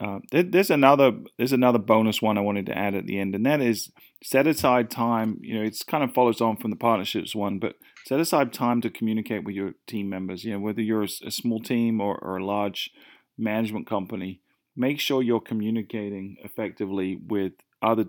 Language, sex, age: English, male, 30-49